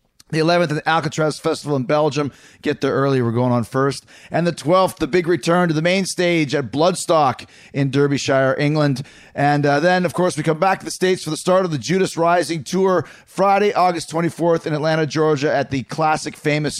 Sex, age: male, 30-49